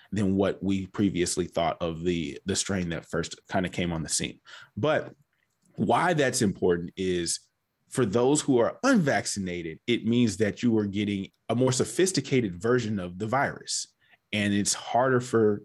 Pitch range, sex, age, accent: 95-120 Hz, male, 30-49, American